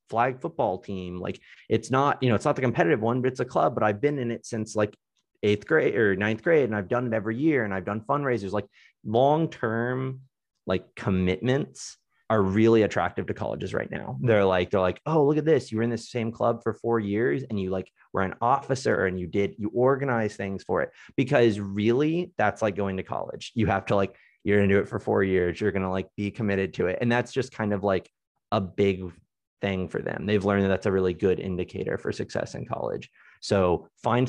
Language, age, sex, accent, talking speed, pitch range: English, 30-49, male, American, 230 wpm, 95-115 Hz